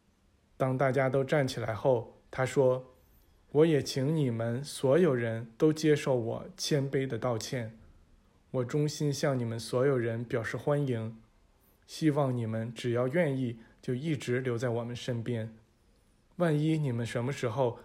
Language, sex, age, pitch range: Chinese, male, 20-39, 115-140 Hz